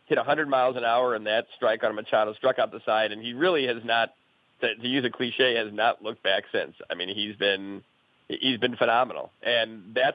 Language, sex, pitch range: English, male, 110-130 Hz